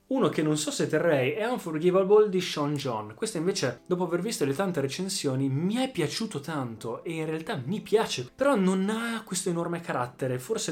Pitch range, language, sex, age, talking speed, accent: 125-155 Hz, Italian, male, 20-39, 195 wpm, native